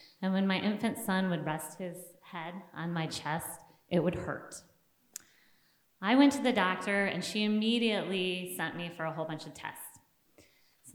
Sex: female